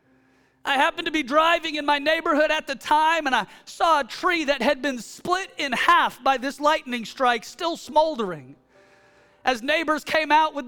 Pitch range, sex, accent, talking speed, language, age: 275-360 Hz, male, American, 185 wpm, English, 40-59